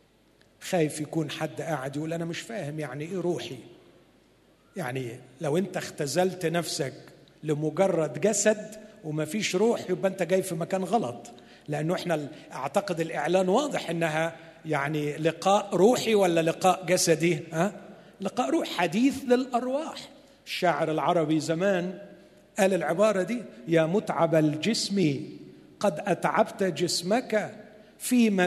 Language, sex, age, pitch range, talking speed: Arabic, male, 50-69, 155-220 Hz, 120 wpm